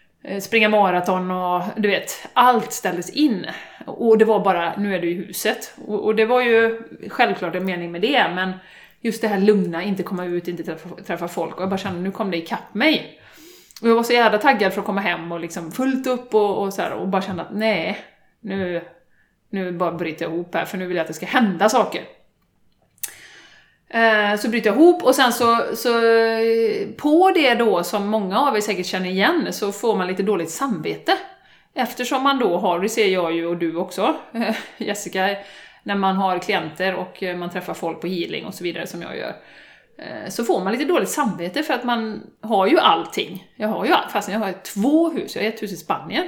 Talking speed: 215 wpm